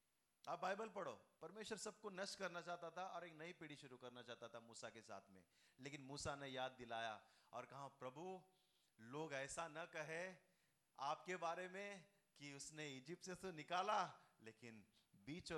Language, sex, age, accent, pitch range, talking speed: Hindi, male, 30-49, native, 115-175 Hz, 110 wpm